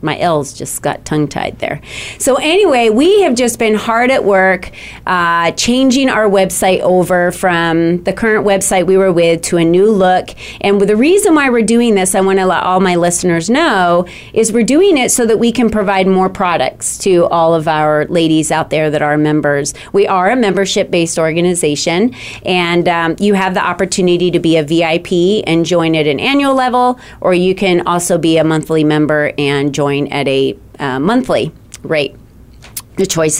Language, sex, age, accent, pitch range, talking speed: English, female, 30-49, American, 170-205 Hz, 185 wpm